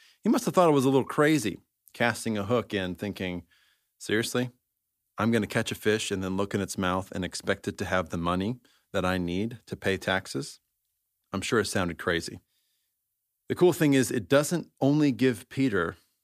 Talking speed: 200 wpm